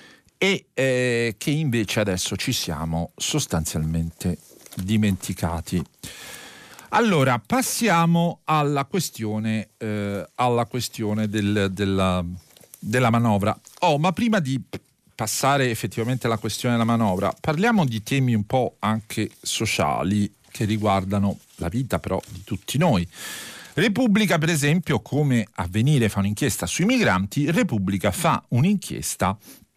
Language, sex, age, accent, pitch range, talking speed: Italian, male, 50-69, native, 100-140 Hz, 115 wpm